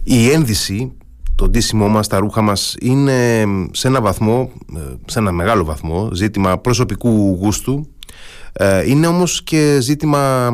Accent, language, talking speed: native, Greek, 130 wpm